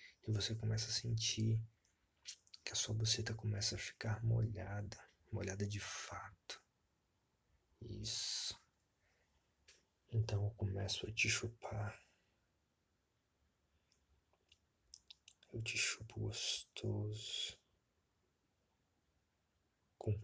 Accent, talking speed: Brazilian, 85 wpm